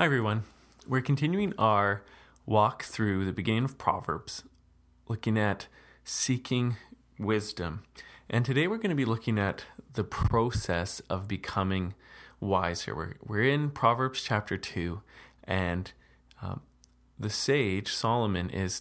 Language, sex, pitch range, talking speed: English, male, 90-110 Hz, 130 wpm